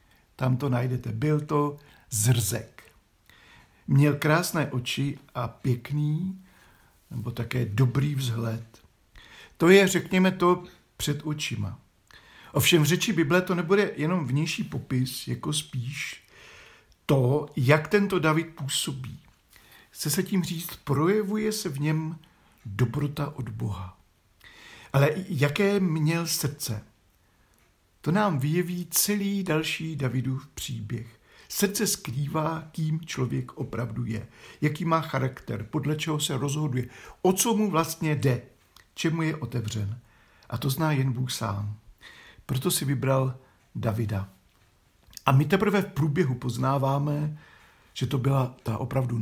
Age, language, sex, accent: 50-69, Czech, male, native